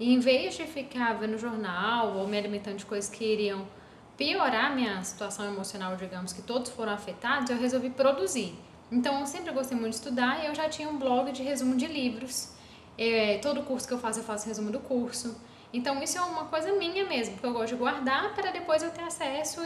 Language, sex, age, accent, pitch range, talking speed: Portuguese, female, 10-29, Brazilian, 230-280 Hz, 215 wpm